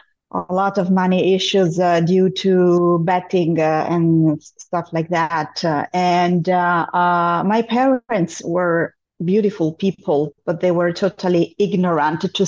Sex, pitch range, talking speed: female, 175-205 Hz, 140 wpm